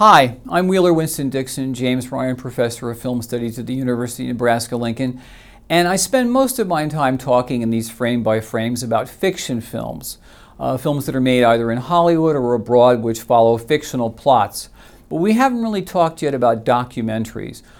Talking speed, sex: 175 wpm, male